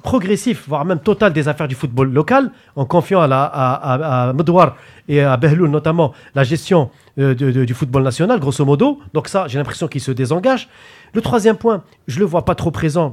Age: 40-59